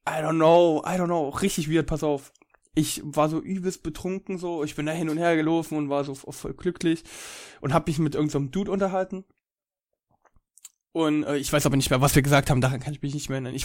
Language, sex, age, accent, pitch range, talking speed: German, male, 10-29, German, 145-170 Hz, 240 wpm